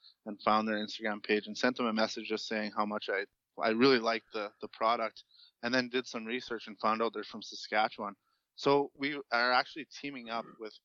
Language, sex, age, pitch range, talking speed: English, male, 20-39, 105-120 Hz, 215 wpm